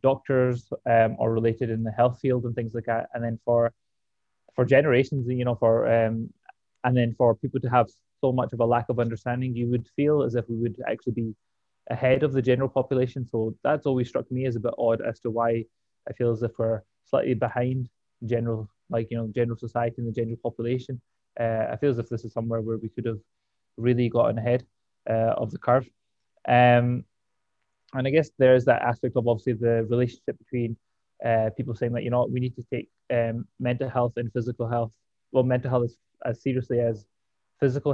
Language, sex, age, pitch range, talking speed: English, male, 20-39, 115-125 Hz, 210 wpm